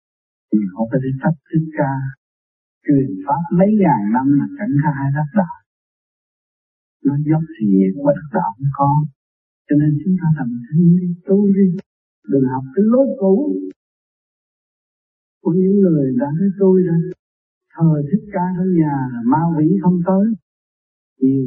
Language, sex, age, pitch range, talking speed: Vietnamese, male, 60-79, 130-185 Hz, 150 wpm